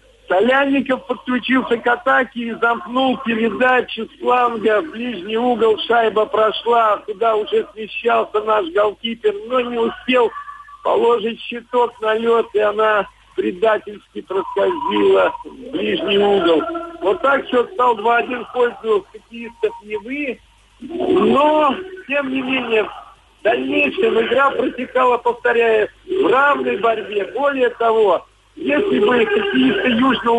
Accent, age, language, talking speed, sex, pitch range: native, 50-69, Russian, 115 wpm, male, 220-275 Hz